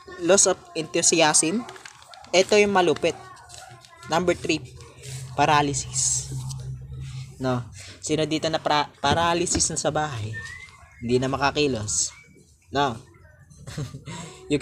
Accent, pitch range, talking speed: native, 125-160 Hz, 95 wpm